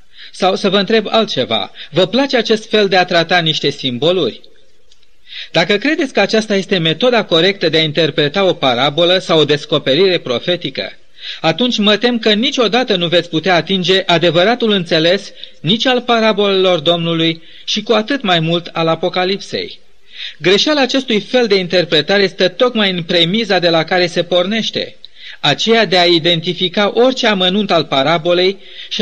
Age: 30-49